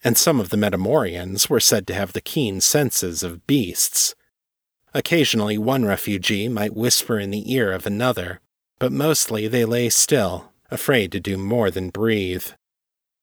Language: English